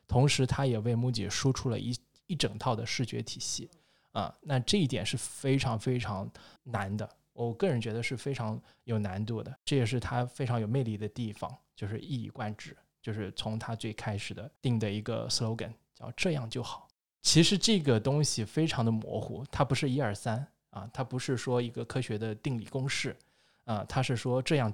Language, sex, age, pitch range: Chinese, male, 20-39, 110-135 Hz